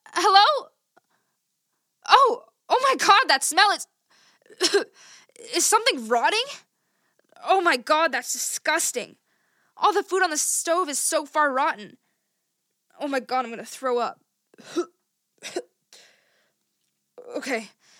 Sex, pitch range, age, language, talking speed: female, 280-435 Hz, 10-29, English, 115 wpm